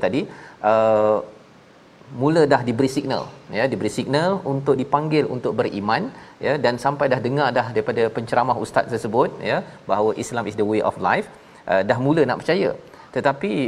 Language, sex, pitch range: Malayalam, male, 110-130 Hz